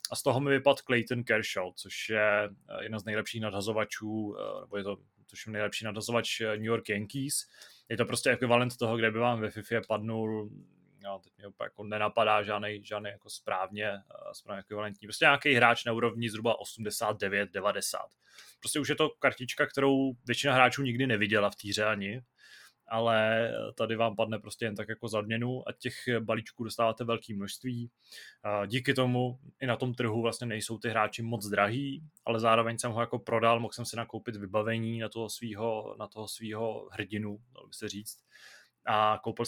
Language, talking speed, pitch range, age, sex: Czech, 170 wpm, 105-120 Hz, 20-39, male